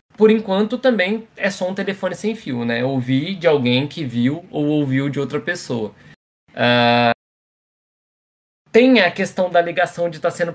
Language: Portuguese